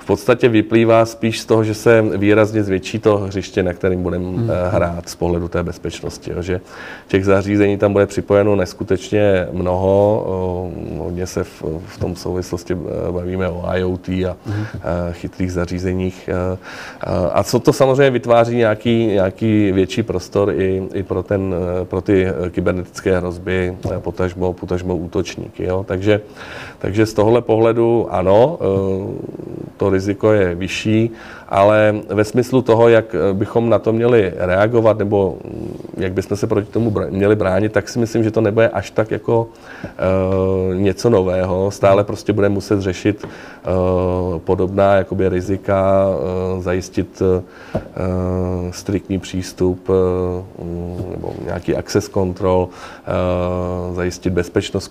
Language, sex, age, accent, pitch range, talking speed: Czech, male, 40-59, native, 90-105 Hz, 130 wpm